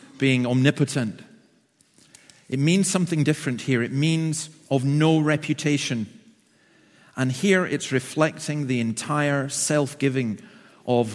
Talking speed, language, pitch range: 110 wpm, English, 130-160 Hz